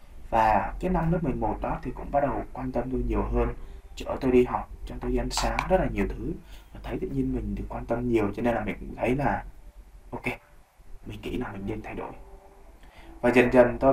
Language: Vietnamese